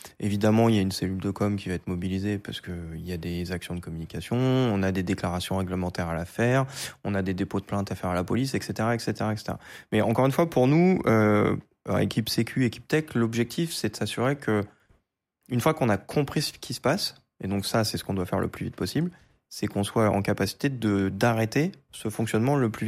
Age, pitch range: 20-39, 100-125 Hz